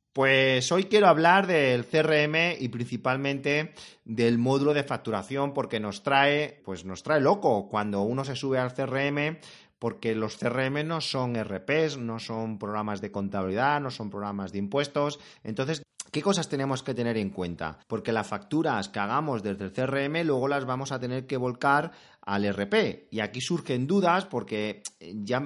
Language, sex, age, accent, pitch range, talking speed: Spanish, male, 30-49, Spanish, 110-150 Hz, 170 wpm